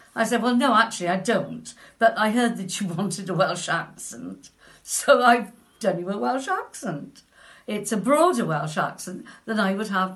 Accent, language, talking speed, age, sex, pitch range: British, English, 190 wpm, 50-69, female, 165-225 Hz